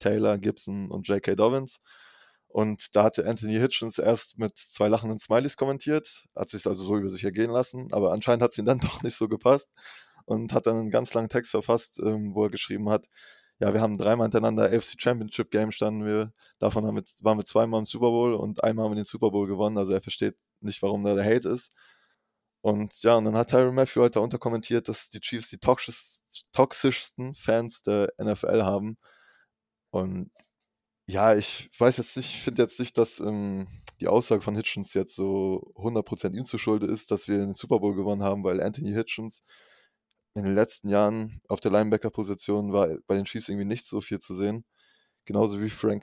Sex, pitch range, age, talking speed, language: male, 100-115 Hz, 20-39, 200 wpm, German